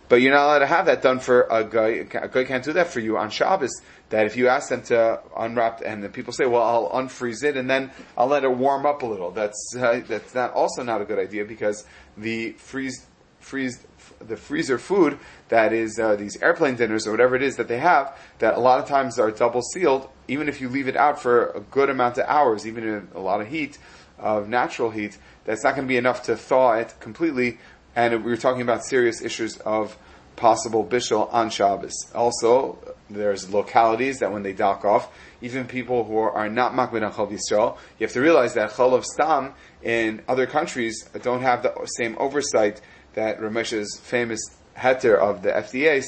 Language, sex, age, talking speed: English, male, 30-49, 215 wpm